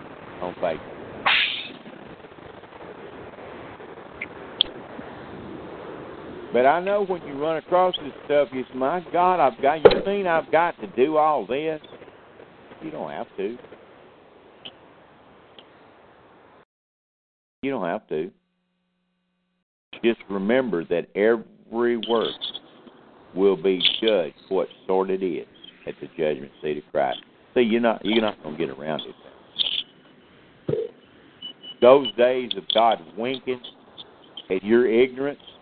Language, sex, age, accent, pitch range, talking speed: English, male, 60-79, American, 95-160 Hz, 115 wpm